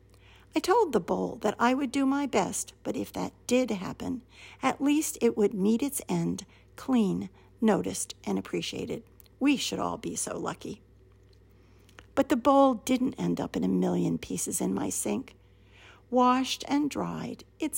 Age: 60-79